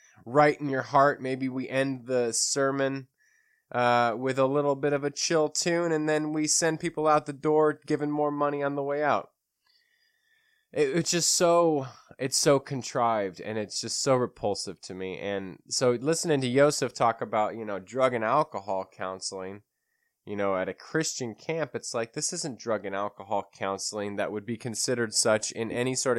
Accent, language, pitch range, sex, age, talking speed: American, English, 110-150 Hz, male, 20-39, 185 wpm